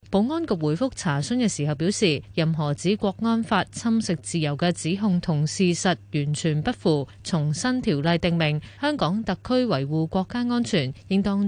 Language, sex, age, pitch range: Chinese, female, 20-39, 155-210 Hz